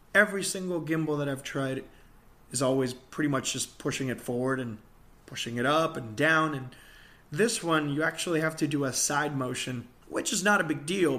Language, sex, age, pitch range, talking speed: English, male, 20-39, 135-185 Hz, 200 wpm